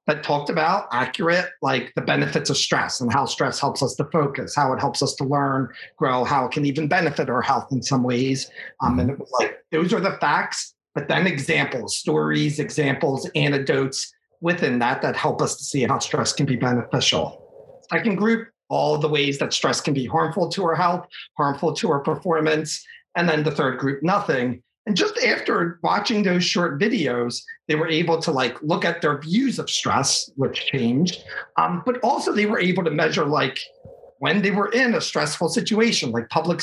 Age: 40-59